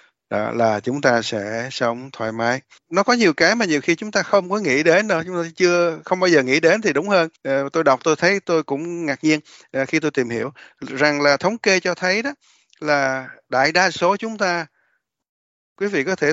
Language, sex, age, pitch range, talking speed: Vietnamese, male, 20-39, 120-165 Hz, 225 wpm